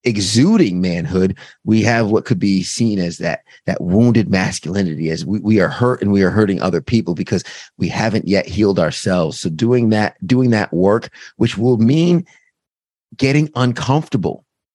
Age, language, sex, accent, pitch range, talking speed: 30-49, English, male, American, 95-120 Hz, 165 wpm